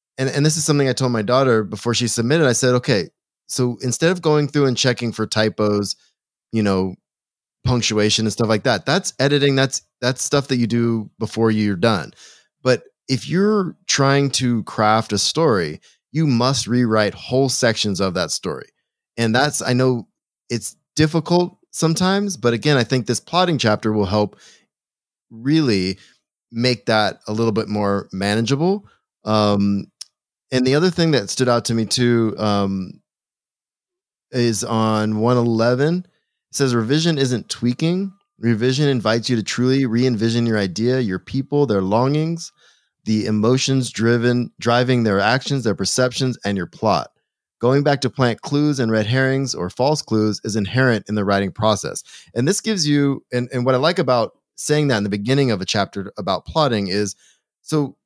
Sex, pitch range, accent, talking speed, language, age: male, 110-140 Hz, American, 170 wpm, English, 20-39